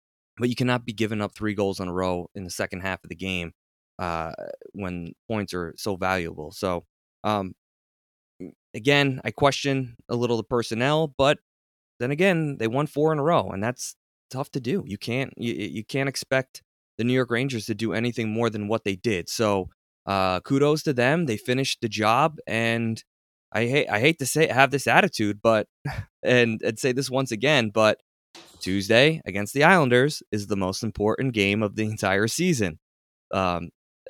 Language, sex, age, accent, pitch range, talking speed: English, male, 20-39, American, 95-125 Hz, 185 wpm